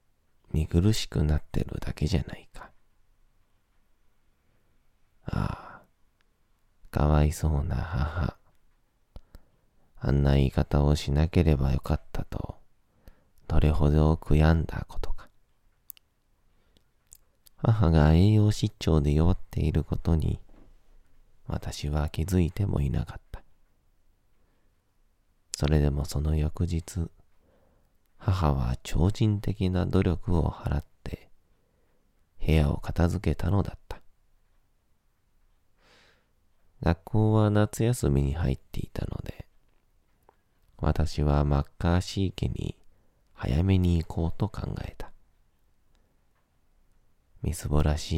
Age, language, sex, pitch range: 40-59, Japanese, male, 75-90 Hz